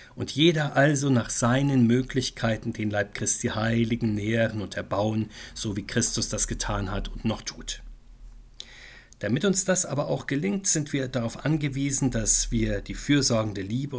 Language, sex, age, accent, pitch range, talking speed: German, male, 50-69, German, 110-130 Hz, 160 wpm